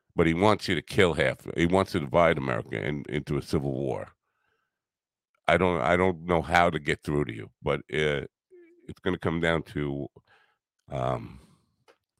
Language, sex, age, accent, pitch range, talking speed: English, male, 50-69, American, 70-90 Hz, 175 wpm